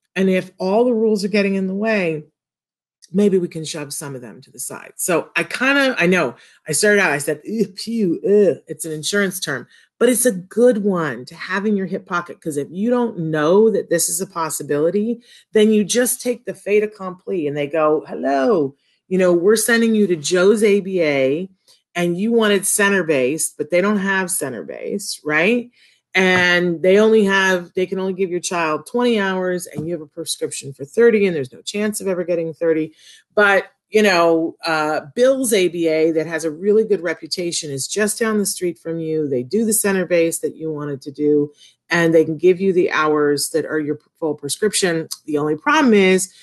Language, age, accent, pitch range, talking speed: English, 40-59, American, 155-205 Hz, 210 wpm